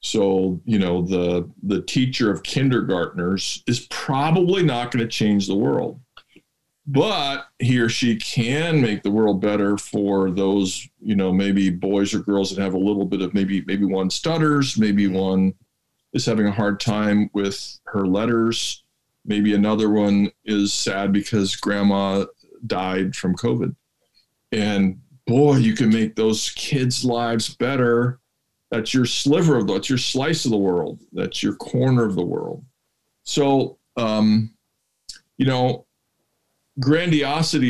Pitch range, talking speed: 100-130 Hz, 150 wpm